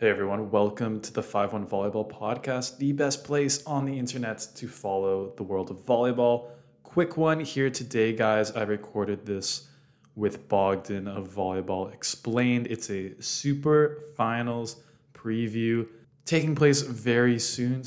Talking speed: 140 wpm